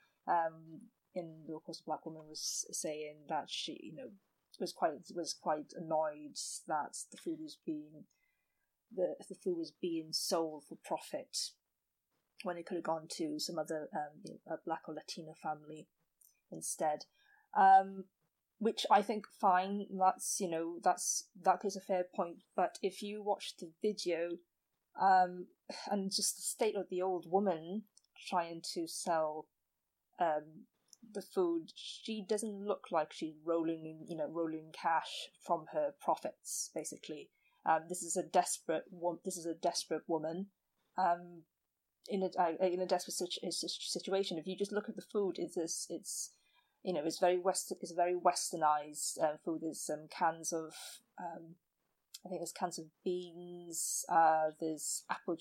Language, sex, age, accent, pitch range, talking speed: English, female, 30-49, British, 160-195 Hz, 165 wpm